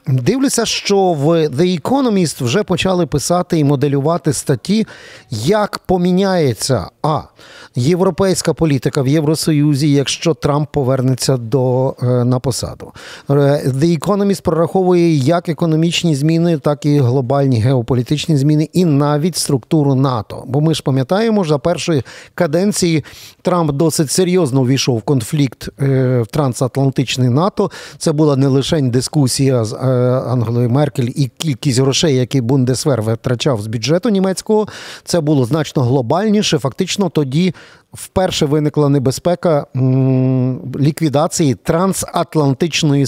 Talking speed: 120 wpm